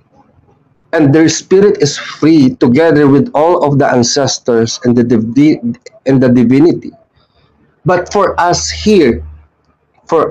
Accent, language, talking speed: Filipino, English, 130 wpm